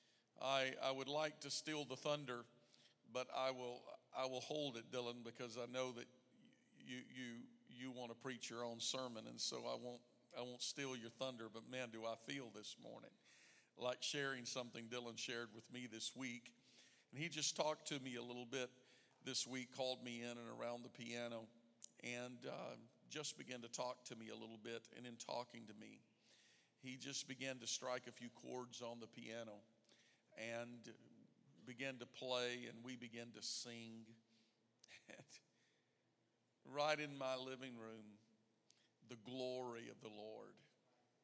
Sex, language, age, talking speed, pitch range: male, English, 50-69, 170 wpm, 115-130 Hz